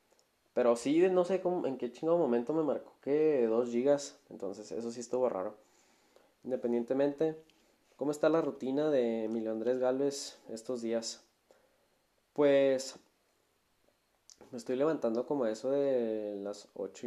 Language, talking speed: Spanish, 135 wpm